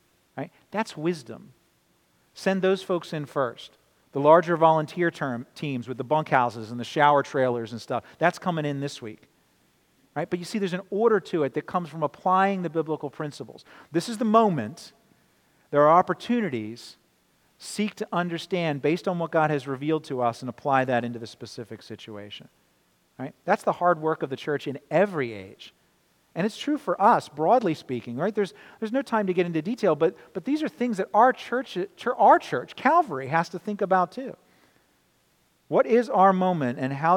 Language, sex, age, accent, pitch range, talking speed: English, male, 40-59, American, 130-180 Hz, 190 wpm